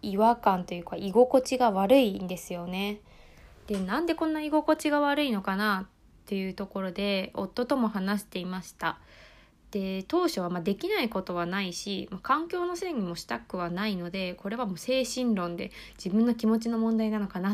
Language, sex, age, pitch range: Japanese, female, 20-39, 190-260 Hz